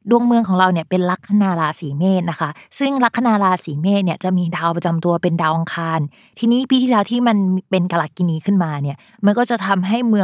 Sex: female